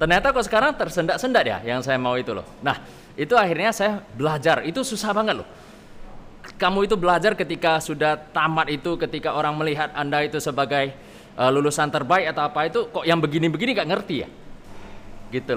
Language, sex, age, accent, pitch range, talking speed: Indonesian, male, 20-39, native, 145-180 Hz, 175 wpm